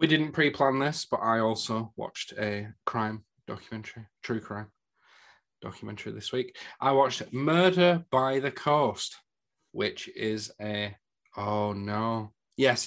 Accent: British